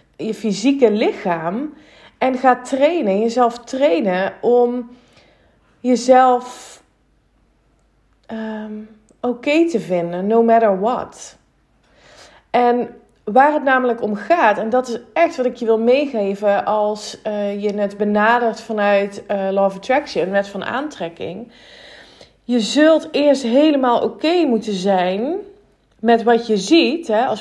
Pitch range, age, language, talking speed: 200-255 Hz, 30-49, Dutch, 130 wpm